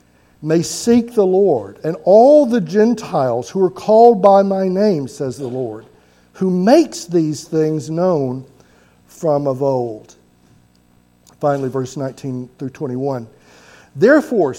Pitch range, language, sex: 125-200 Hz, English, male